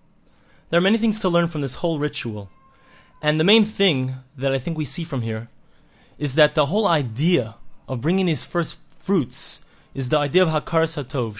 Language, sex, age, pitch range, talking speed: English, male, 20-39, 135-180 Hz, 195 wpm